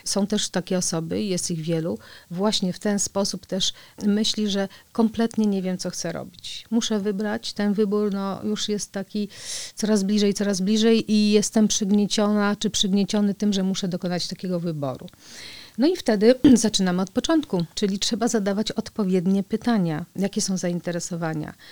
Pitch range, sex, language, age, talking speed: 180-210 Hz, female, Polish, 40-59, 155 wpm